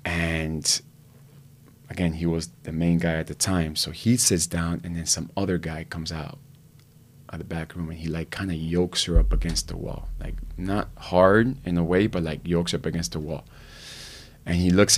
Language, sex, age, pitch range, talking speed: English, male, 30-49, 85-125 Hz, 210 wpm